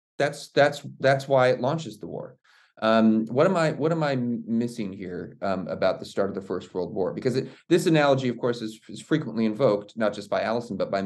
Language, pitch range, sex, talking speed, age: English, 100-130 Hz, male, 235 wpm, 30-49